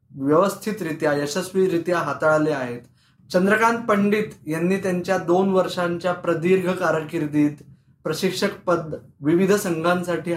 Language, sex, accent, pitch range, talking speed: Marathi, male, native, 155-195 Hz, 95 wpm